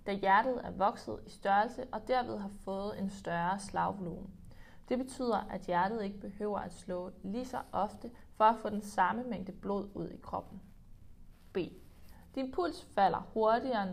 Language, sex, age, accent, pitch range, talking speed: Danish, female, 20-39, native, 190-240 Hz, 170 wpm